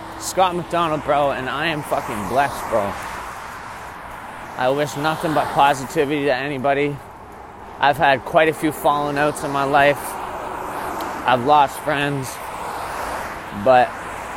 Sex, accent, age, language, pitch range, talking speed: male, American, 20-39, English, 130-150 Hz, 125 wpm